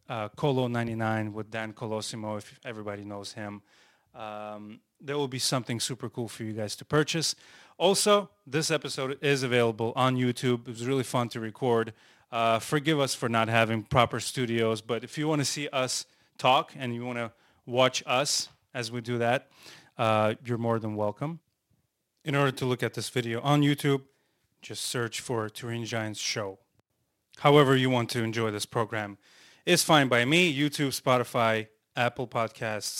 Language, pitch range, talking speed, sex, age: English, 110-140 Hz, 175 wpm, male, 30-49